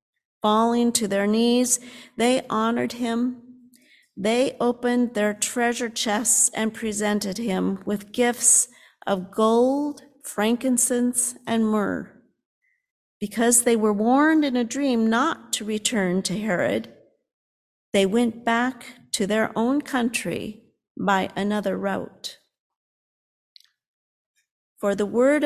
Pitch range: 210-255 Hz